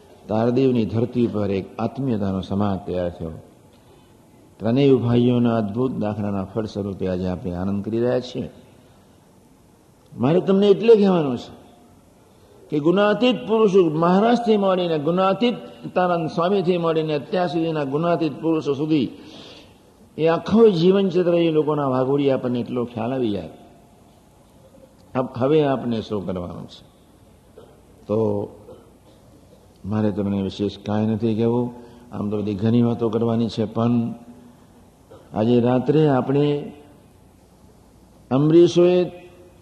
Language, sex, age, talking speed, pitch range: Gujarati, male, 60-79, 110 wpm, 105-170 Hz